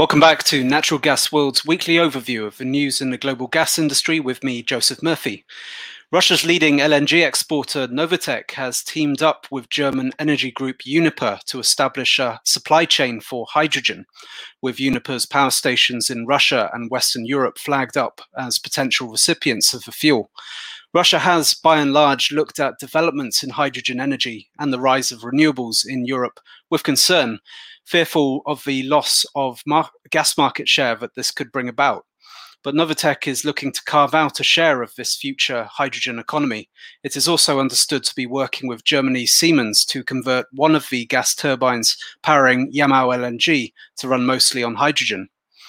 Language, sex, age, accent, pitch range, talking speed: English, male, 30-49, British, 130-155 Hz, 170 wpm